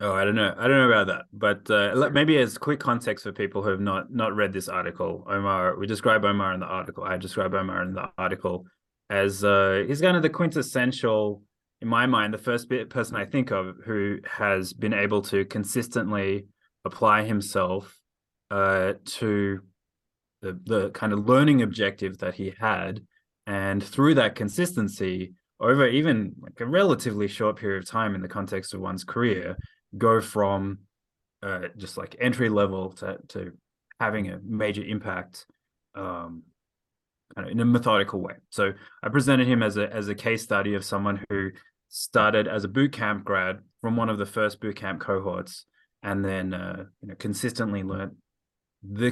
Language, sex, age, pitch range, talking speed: English, male, 20-39, 95-115 Hz, 175 wpm